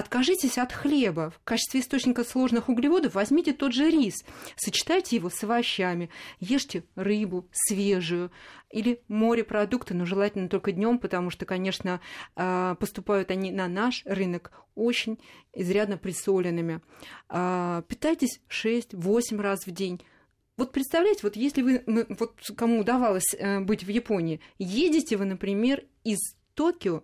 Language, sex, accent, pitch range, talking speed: Russian, female, native, 195-255 Hz, 120 wpm